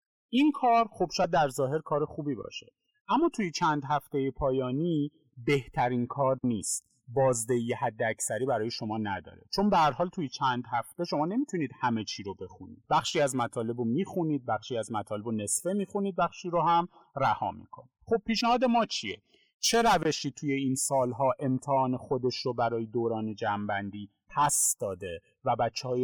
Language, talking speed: Persian, 155 wpm